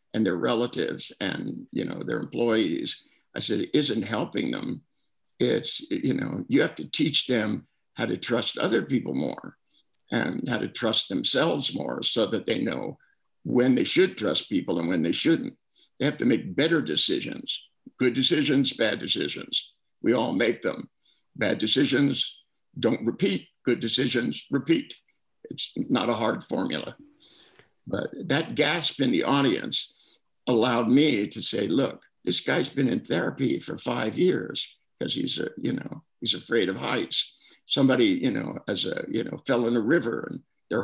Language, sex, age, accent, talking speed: English, male, 60-79, American, 165 wpm